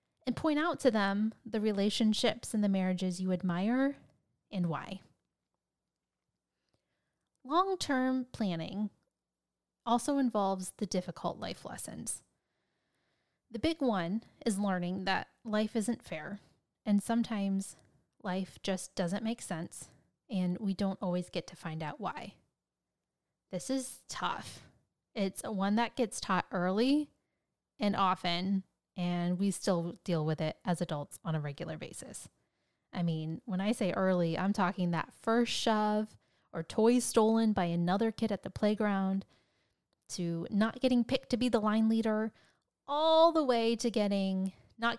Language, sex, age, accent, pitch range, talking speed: English, female, 10-29, American, 185-230 Hz, 140 wpm